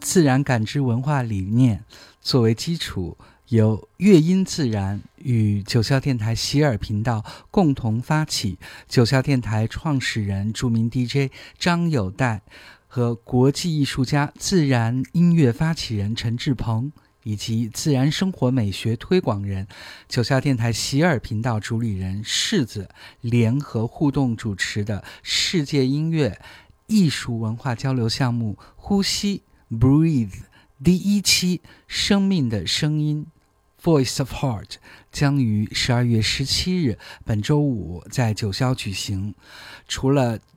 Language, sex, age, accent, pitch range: Chinese, male, 50-69, native, 110-145 Hz